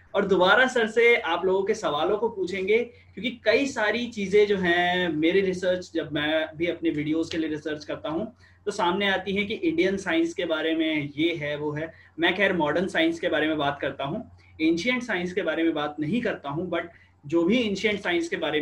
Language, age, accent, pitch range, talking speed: Hindi, 20-39, native, 155-205 Hz, 220 wpm